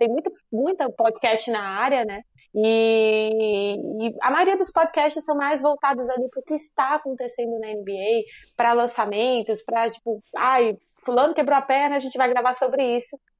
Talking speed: 175 wpm